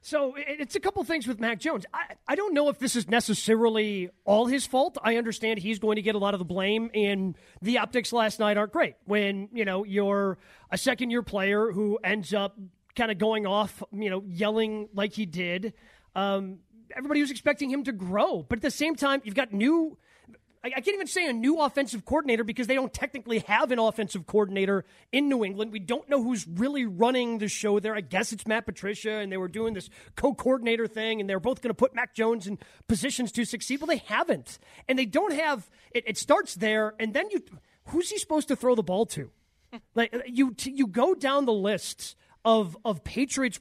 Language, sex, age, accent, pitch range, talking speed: English, male, 30-49, American, 205-260 Hz, 220 wpm